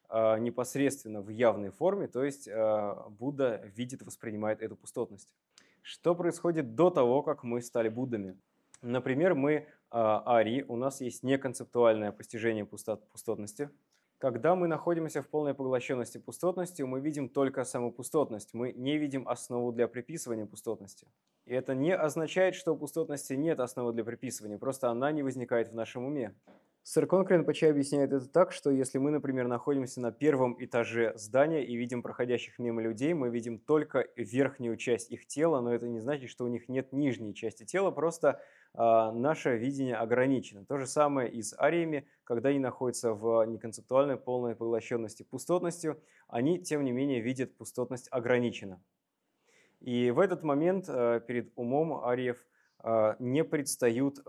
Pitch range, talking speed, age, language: 115-145 Hz, 155 wpm, 20-39, English